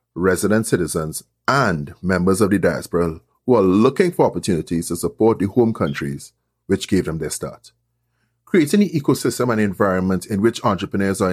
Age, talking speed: 30-49, 165 wpm